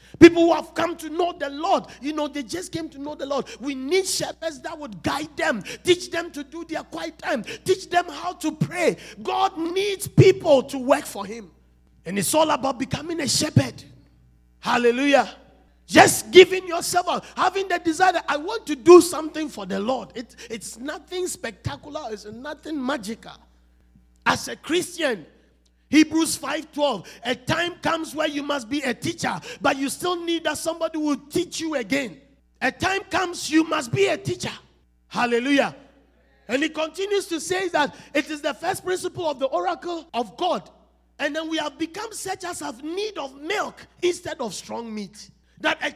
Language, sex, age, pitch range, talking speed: English, male, 50-69, 270-350 Hz, 180 wpm